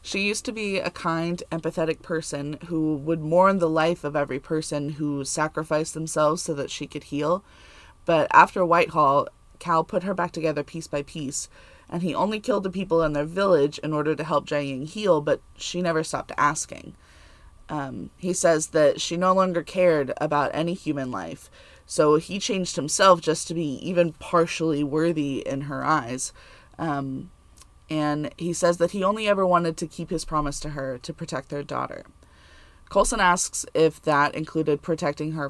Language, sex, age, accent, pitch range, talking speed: English, female, 20-39, American, 150-175 Hz, 180 wpm